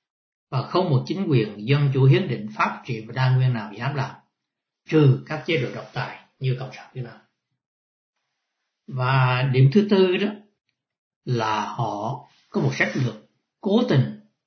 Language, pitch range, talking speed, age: Vietnamese, 125-175 Hz, 170 wpm, 60-79